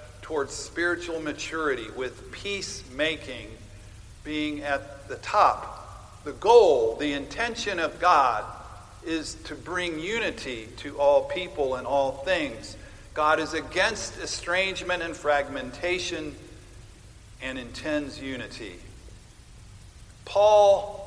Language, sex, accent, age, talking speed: English, male, American, 50-69, 100 wpm